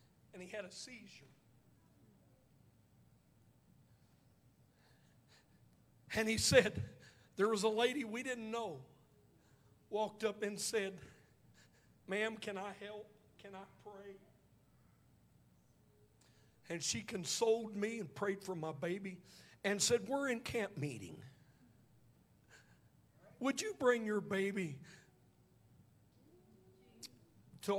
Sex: male